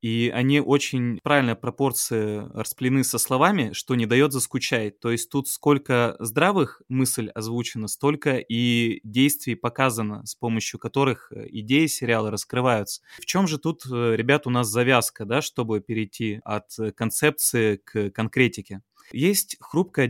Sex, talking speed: male, 135 wpm